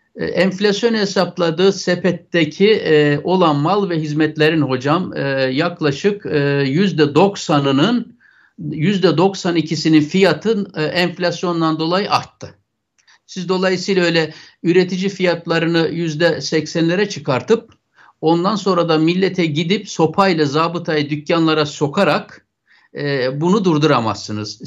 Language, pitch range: Turkish, 160-225 Hz